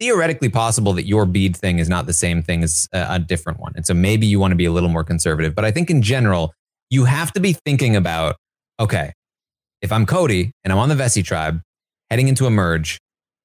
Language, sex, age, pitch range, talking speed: English, male, 30-49, 85-110 Hz, 230 wpm